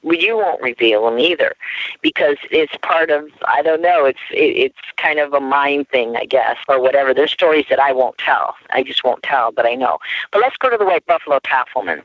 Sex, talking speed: female, 230 wpm